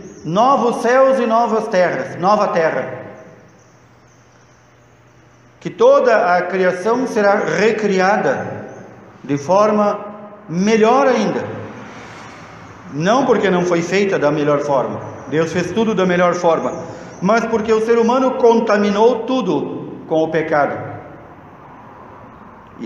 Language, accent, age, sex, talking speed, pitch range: Portuguese, Brazilian, 50-69, male, 110 wpm, 155-215 Hz